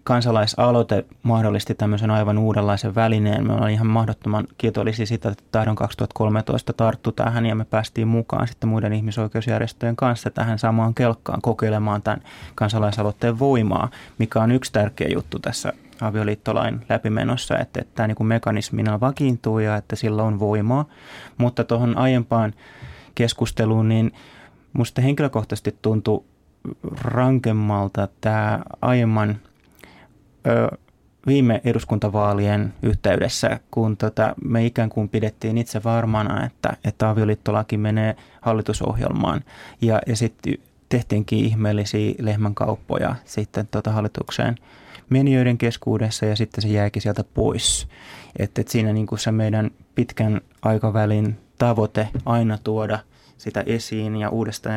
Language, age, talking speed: Finnish, 20-39, 125 wpm